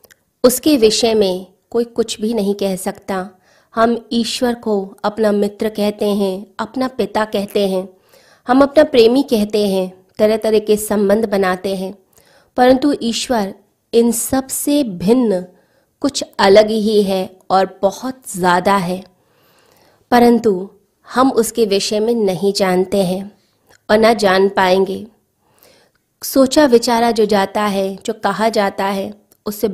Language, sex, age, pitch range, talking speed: Hindi, female, 30-49, 195-235 Hz, 135 wpm